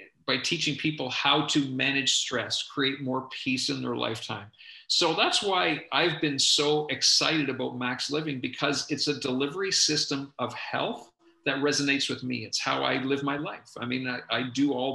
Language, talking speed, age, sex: English, 185 wpm, 40-59, male